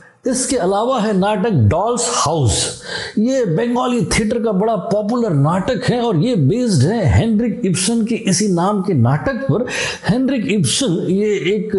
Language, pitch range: Hindi, 165-220 Hz